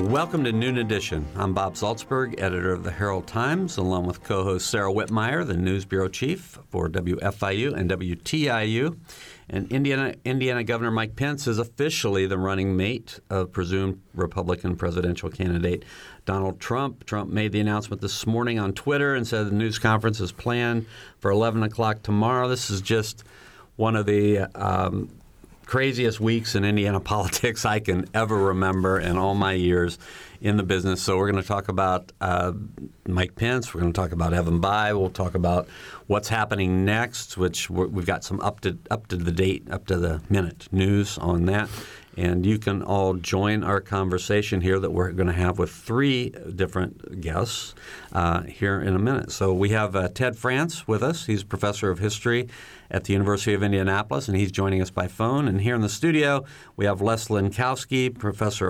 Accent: American